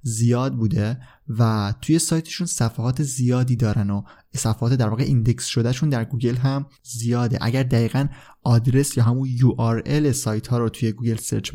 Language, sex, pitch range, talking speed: Persian, male, 115-140 Hz, 160 wpm